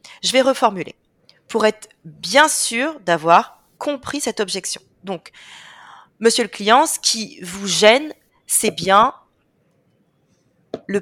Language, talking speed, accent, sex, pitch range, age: French, 120 wpm, French, female, 190-260 Hz, 30-49